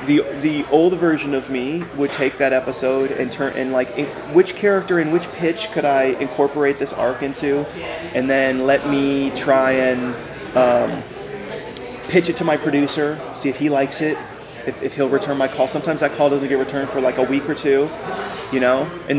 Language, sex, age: English, male, 20-39